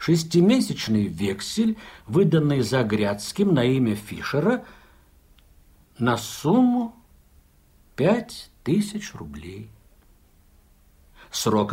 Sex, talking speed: male, 60 wpm